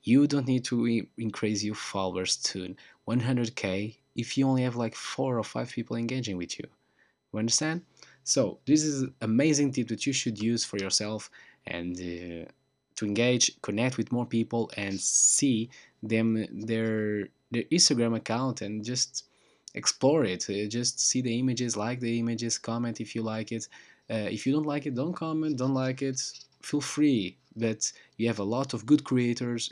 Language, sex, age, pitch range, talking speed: English, male, 20-39, 105-130 Hz, 180 wpm